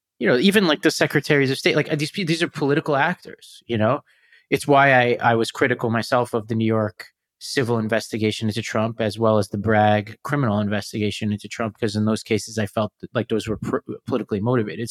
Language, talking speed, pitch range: English, 210 wpm, 105-135 Hz